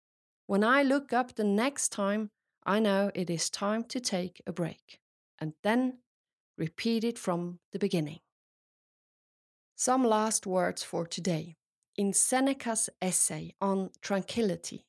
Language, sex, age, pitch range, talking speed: English, female, 40-59, 185-235 Hz, 135 wpm